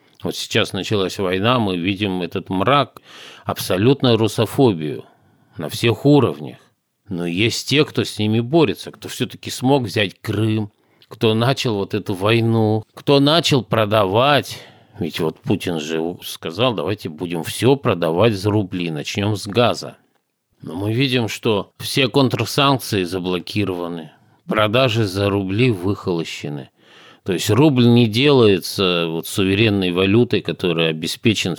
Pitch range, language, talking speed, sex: 95-120 Hz, Russian, 125 wpm, male